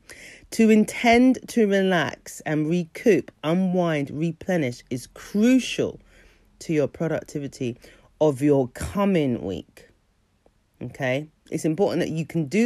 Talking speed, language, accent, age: 115 wpm, English, British, 40-59